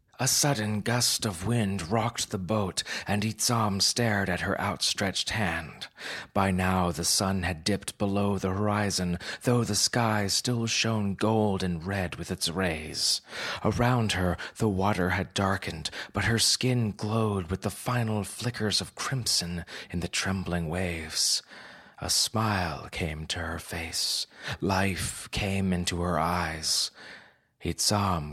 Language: English